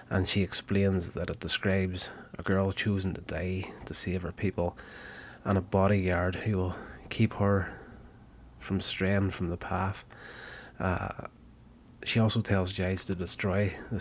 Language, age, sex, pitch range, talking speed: English, 30-49, male, 90-100 Hz, 150 wpm